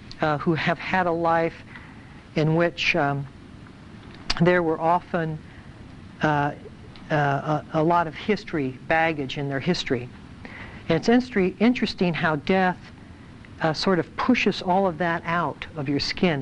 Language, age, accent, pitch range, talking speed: English, 60-79, American, 140-175 Hz, 140 wpm